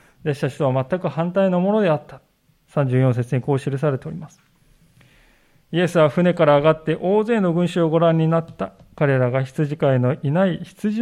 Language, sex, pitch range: Japanese, male, 130-175 Hz